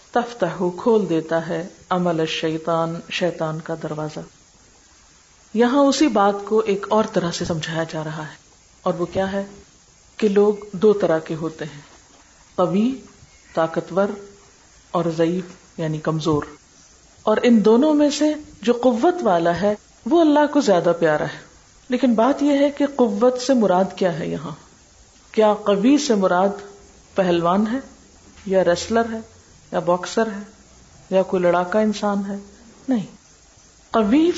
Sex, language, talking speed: female, Urdu, 145 wpm